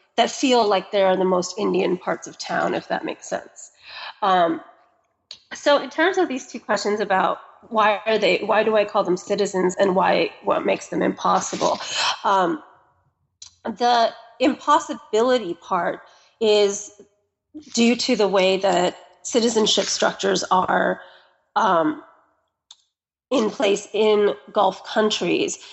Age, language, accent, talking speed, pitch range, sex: 30-49, English, American, 135 wpm, 190-230 Hz, female